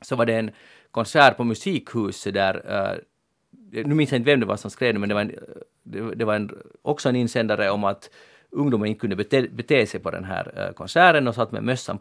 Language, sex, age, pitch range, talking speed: Swedish, male, 40-59, 110-140 Hz, 220 wpm